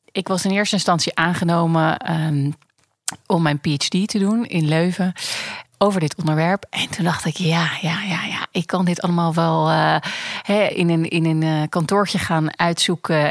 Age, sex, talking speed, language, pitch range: 30-49, female, 165 wpm, Dutch, 155-195 Hz